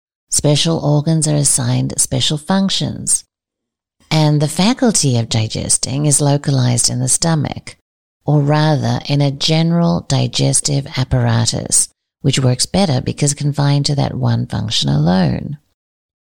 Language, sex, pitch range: English, female, 135-165 Hz